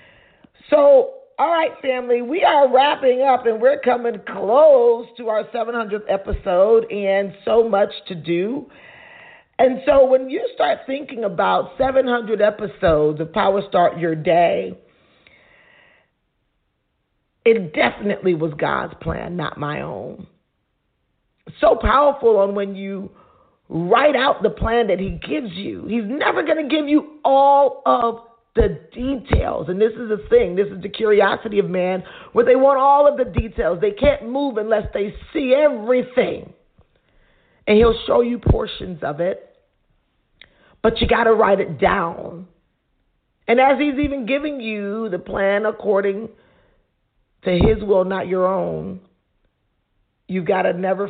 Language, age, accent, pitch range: English, 40-59, American, 185-265 Hz